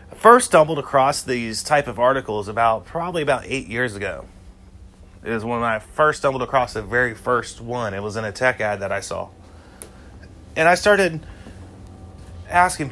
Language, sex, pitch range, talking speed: English, male, 95-145 Hz, 165 wpm